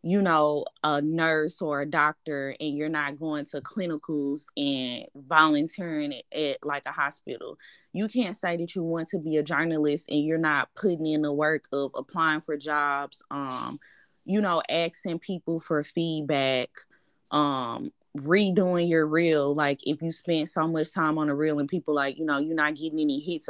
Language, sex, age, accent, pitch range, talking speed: English, female, 20-39, American, 150-165 Hz, 185 wpm